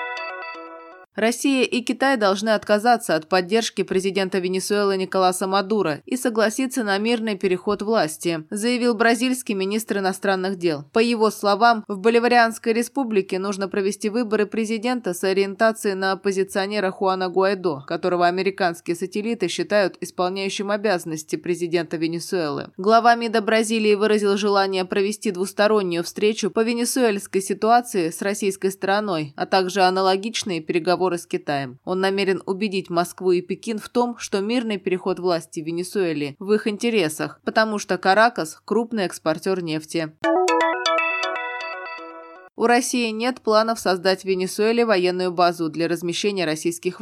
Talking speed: 125 wpm